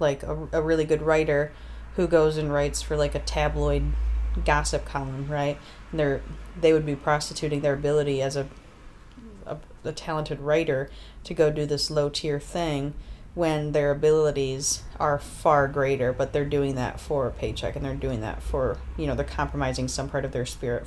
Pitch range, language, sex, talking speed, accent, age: 135-160 Hz, English, female, 185 wpm, American, 30-49